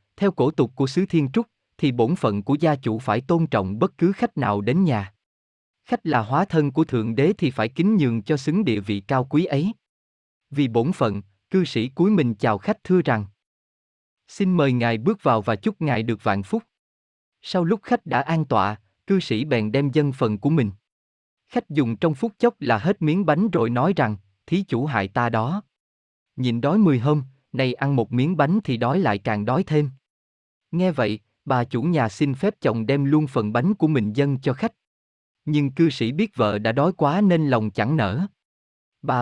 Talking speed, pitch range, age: 210 wpm, 110-165 Hz, 20-39